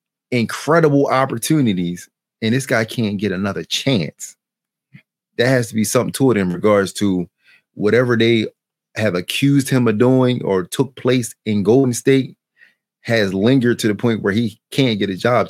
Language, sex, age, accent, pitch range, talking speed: English, male, 30-49, American, 105-135 Hz, 165 wpm